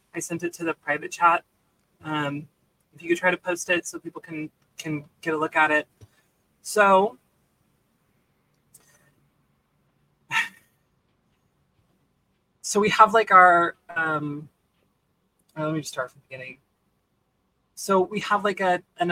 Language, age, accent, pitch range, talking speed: English, 20-39, American, 150-175 Hz, 140 wpm